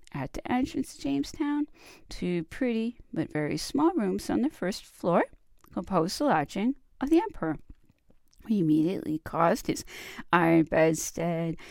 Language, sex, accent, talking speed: English, female, American, 140 wpm